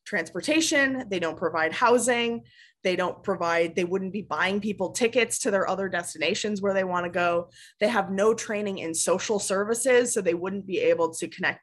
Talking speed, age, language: 190 wpm, 20-39, English